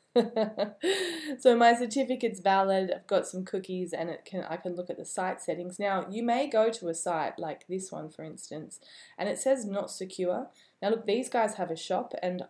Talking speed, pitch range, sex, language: 205 wpm, 170-210 Hz, female, English